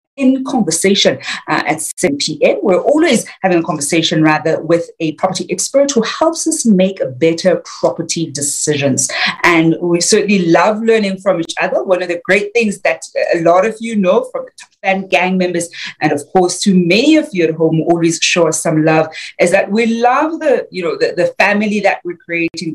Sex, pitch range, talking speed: female, 165-220 Hz, 185 wpm